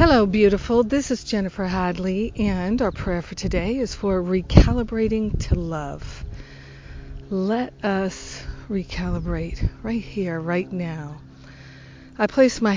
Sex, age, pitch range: female, 50-69, 170-200 Hz